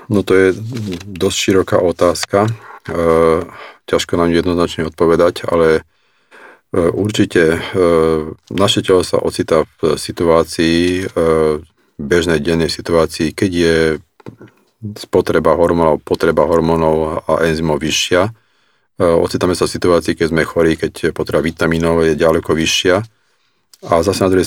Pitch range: 80-90 Hz